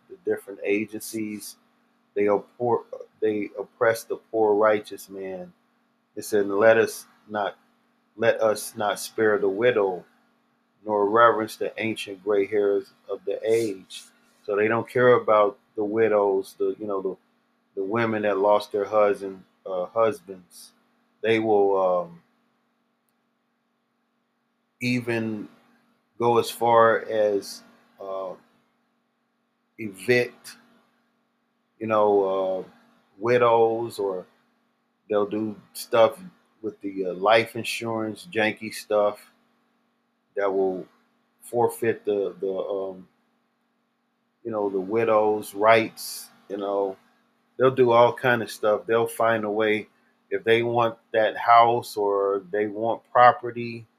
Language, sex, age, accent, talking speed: English, male, 30-49, American, 120 wpm